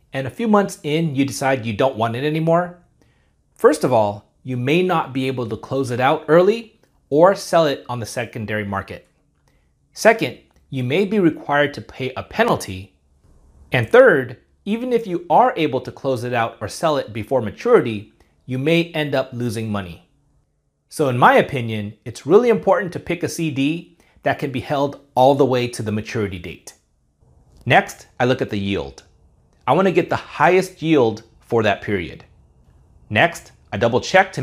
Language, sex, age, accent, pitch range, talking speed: English, male, 30-49, American, 105-155 Hz, 185 wpm